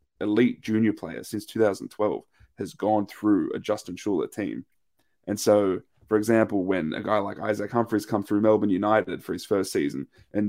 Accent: Australian